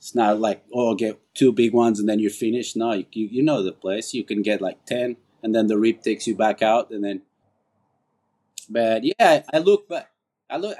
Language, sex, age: English, male, 30-49